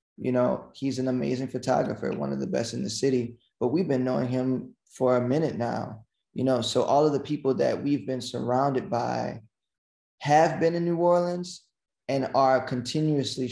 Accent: American